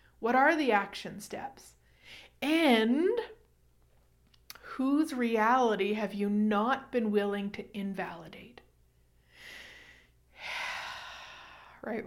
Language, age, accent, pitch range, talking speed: English, 30-49, American, 200-240 Hz, 80 wpm